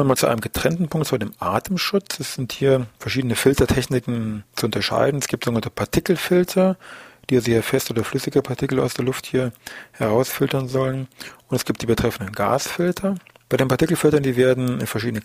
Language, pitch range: German, 115-140 Hz